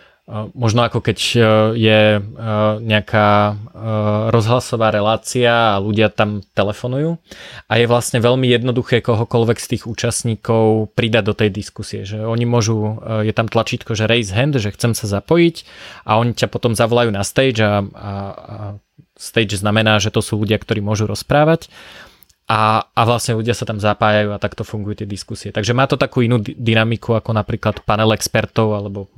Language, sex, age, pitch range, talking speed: Slovak, male, 20-39, 110-120 Hz, 160 wpm